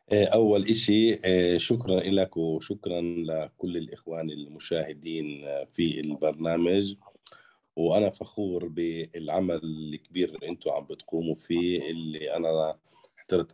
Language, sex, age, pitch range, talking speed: Arabic, male, 40-59, 80-95 Hz, 95 wpm